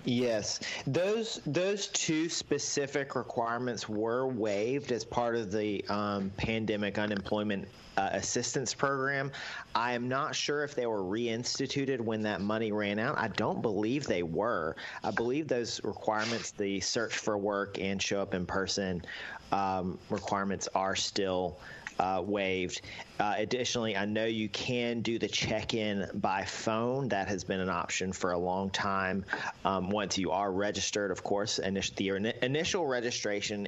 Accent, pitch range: American, 95-120 Hz